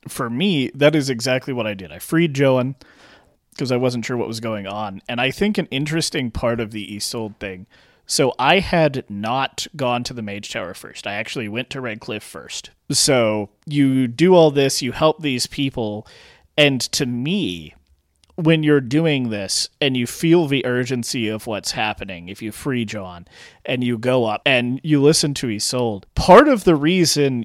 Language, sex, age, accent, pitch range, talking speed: English, male, 30-49, American, 115-145 Hz, 190 wpm